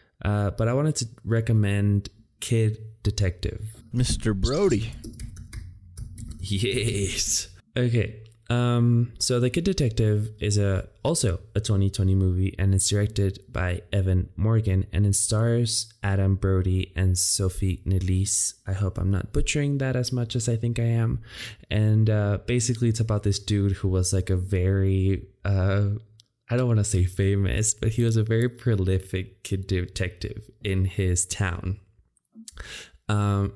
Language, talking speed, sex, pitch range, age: English, 145 wpm, male, 100-115 Hz, 20-39